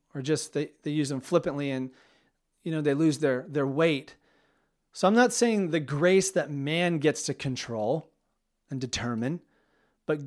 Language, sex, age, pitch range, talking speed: English, male, 30-49, 140-175 Hz, 170 wpm